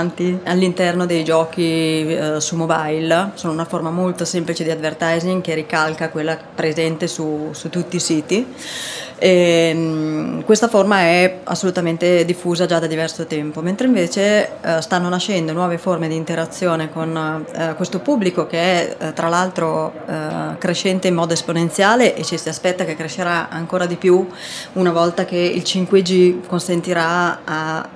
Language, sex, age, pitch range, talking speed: Italian, female, 30-49, 160-180 Hz, 140 wpm